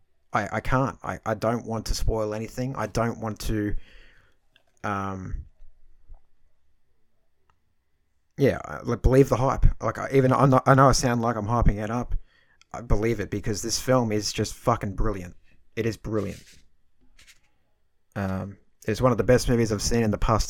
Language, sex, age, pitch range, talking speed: English, male, 30-49, 95-130 Hz, 170 wpm